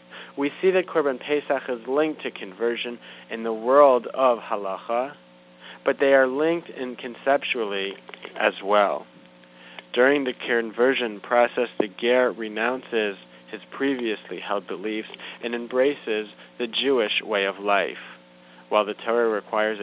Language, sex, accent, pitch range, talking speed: English, male, American, 100-130 Hz, 135 wpm